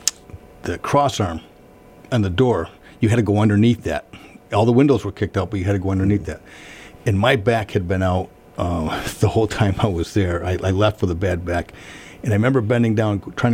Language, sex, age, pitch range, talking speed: English, male, 50-69, 95-110 Hz, 225 wpm